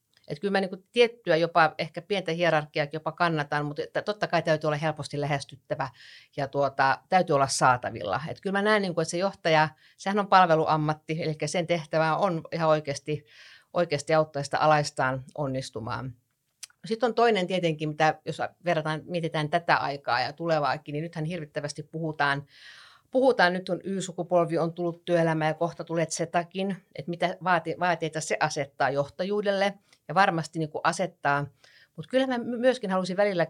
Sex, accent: female, native